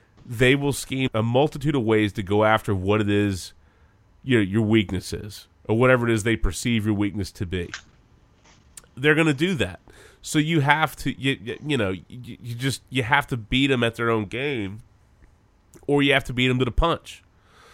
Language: English